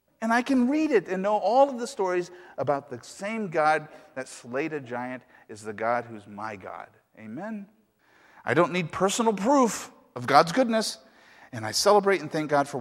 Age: 50-69